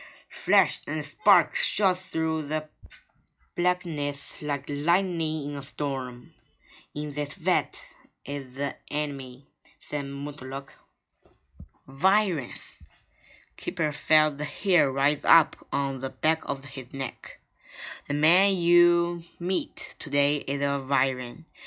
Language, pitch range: Chinese, 140-170 Hz